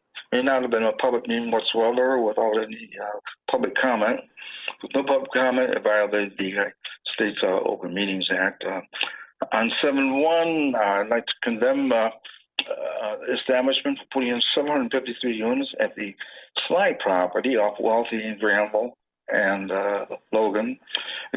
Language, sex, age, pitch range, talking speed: English, male, 60-79, 105-135 Hz, 160 wpm